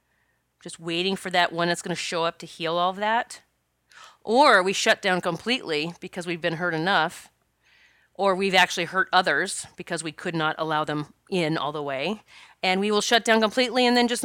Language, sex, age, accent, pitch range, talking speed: English, female, 30-49, American, 170-230 Hz, 200 wpm